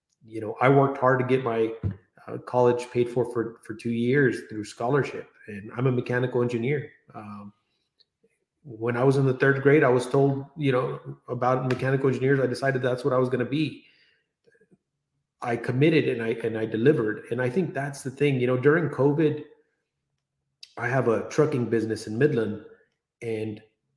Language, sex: English, male